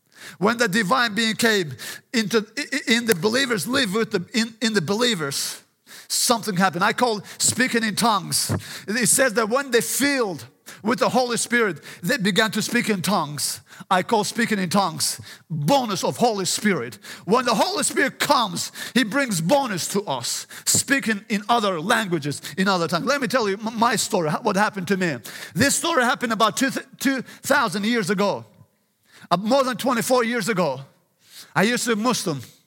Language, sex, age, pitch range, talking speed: English, male, 50-69, 195-245 Hz, 170 wpm